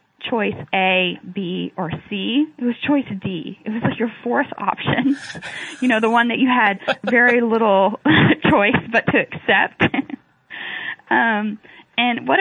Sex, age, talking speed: female, 10-29, 150 wpm